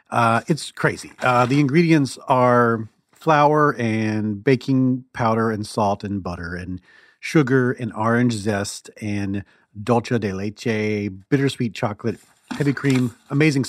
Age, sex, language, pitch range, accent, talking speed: 40-59, male, English, 110-150 Hz, American, 125 wpm